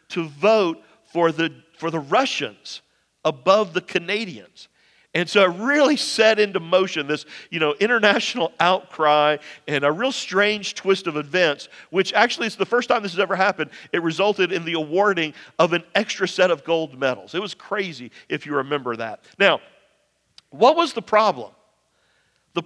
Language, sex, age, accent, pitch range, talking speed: English, male, 50-69, American, 170-230 Hz, 170 wpm